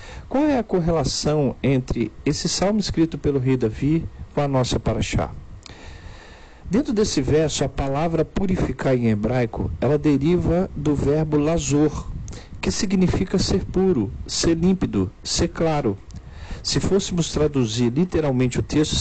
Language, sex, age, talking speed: Portuguese, male, 50-69, 135 wpm